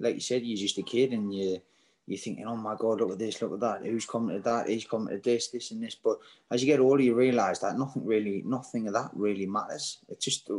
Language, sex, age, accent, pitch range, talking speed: English, male, 20-39, British, 95-125 Hz, 270 wpm